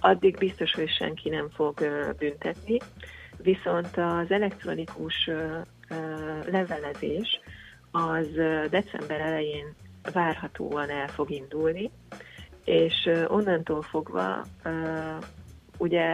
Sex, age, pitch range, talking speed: female, 30-49, 145-175 Hz, 80 wpm